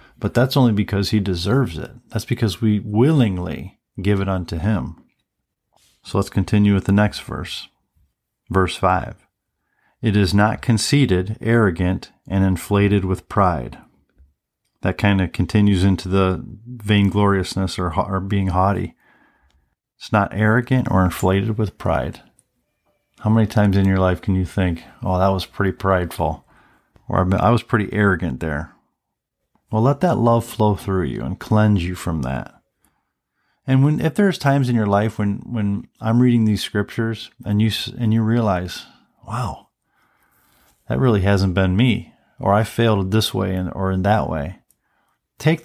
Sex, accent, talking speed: male, American, 155 wpm